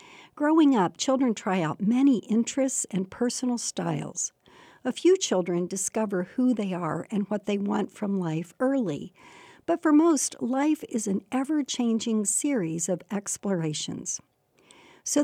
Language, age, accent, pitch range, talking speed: English, 60-79, American, 190-255 Hz, 140 wpm